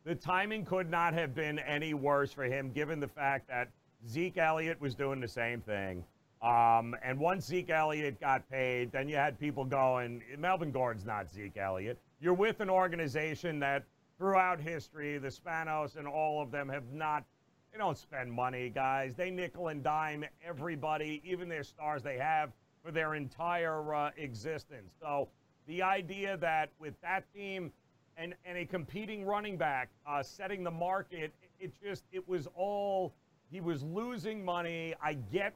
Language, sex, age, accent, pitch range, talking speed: English, male, 40-59, American, 135-180 Hz, 170 wpm